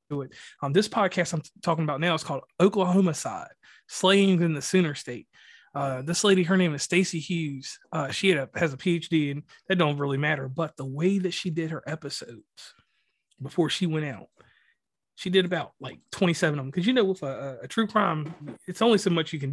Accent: American